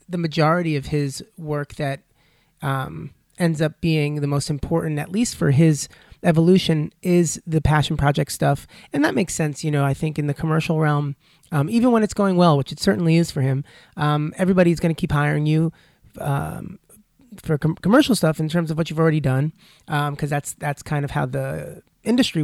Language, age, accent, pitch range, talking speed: English, 30-49, American, 150-185 Hz, 195 wpm